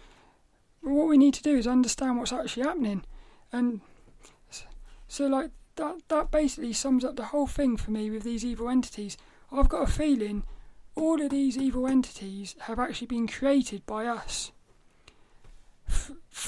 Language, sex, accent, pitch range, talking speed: English, male, British, 230-280 Hz, 160 wpm